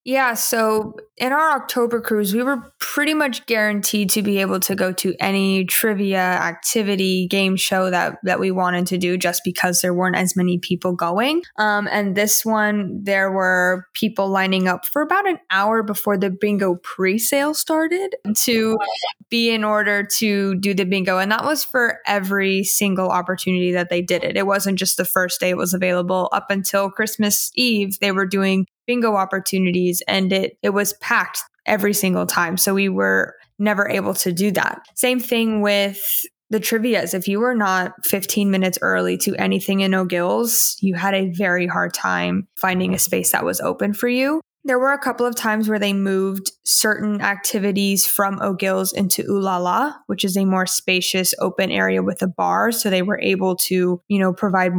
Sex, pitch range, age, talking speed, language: female, 185-215 Hz, 20-39, 185 wpm, English